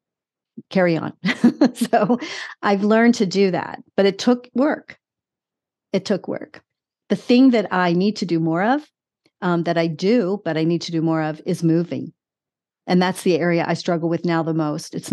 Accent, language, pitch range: American, English, 160-185 Hz